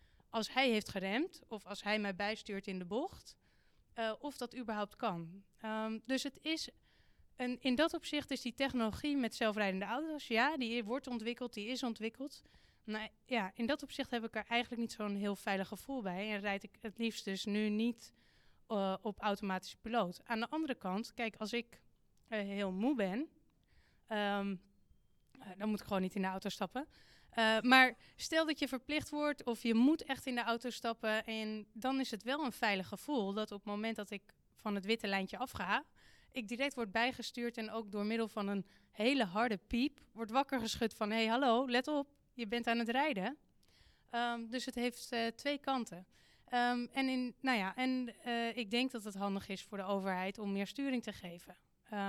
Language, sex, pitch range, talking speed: Dutch, female, 205-250 Hz, 195 wpm